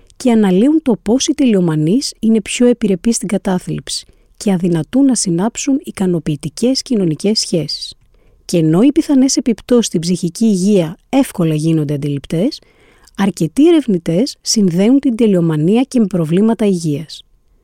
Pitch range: 165-245 Hz